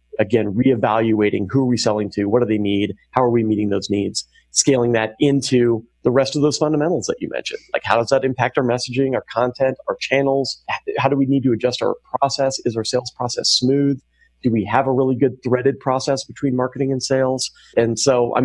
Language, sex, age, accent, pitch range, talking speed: English, male, 30-49, American, 110-135 Hz, 220 wpm